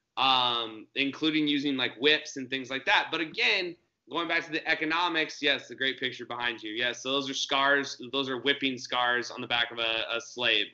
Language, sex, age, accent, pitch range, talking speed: English, male, 30-49, American, 140-170 Hz, 210 wpm